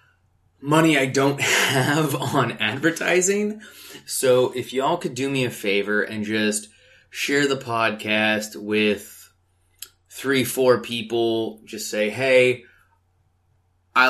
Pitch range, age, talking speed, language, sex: 105-120 Hz, 20-39, 115 wpm, English, male